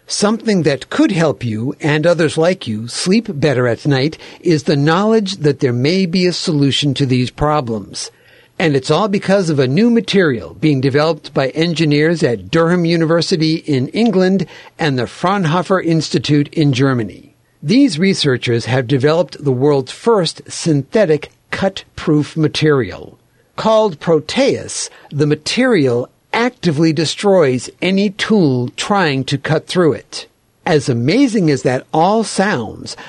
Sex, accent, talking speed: male, American, 140 wpm